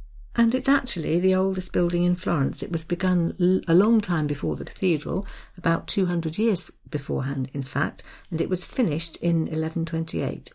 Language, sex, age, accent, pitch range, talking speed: English, female, 50-69, British, 150-185 Hz, 165 wpm